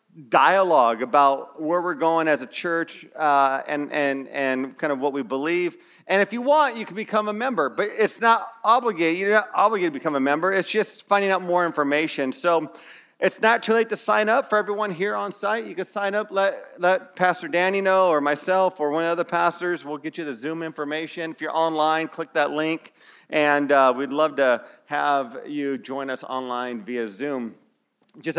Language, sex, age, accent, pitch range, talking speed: English, male, 40-59, American, 140-185 Hz, 205 wpm